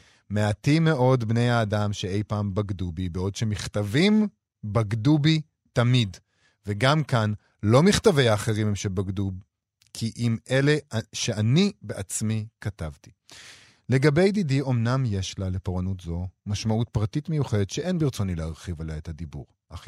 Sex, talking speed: male, 130 wpm